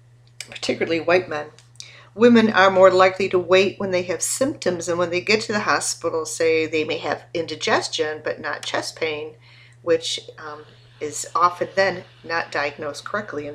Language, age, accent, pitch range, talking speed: English, 50-69, American, 150-190 Hz, 170 wpm